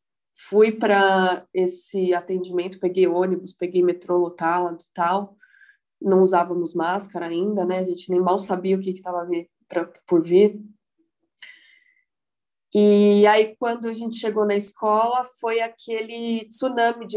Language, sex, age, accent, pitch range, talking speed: Portuguese, female, 20-39, Brazilian, 195-245 Hz, 135 wpm